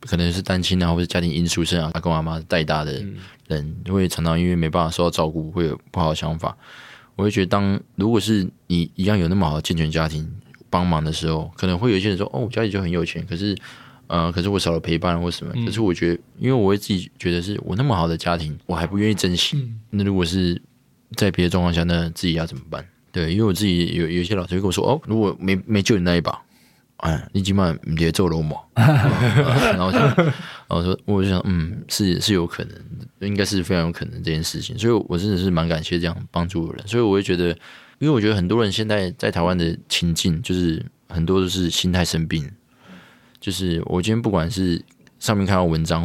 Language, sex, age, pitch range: Chinese, male, 20-39, 85-105 Hz